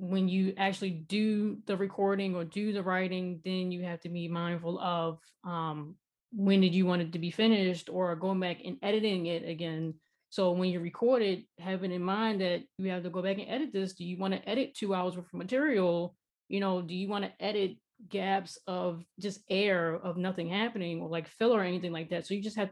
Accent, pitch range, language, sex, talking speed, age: American, 175-210 Hz, English, female, 225 wpm, 20-39